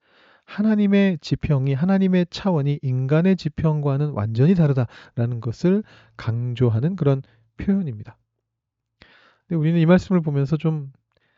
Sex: male